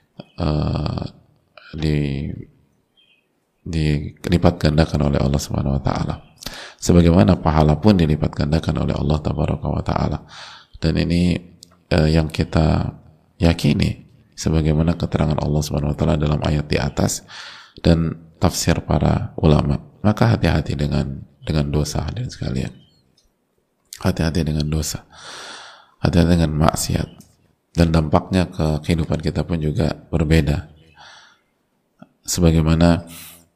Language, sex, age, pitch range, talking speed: Indonesian, male, 30-49, 75-85 Hz, 110 wpm